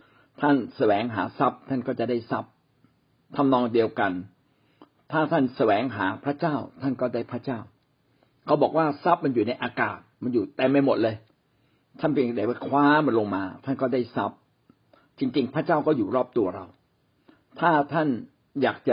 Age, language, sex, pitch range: 60-79, Thai, male, 115-140 Hz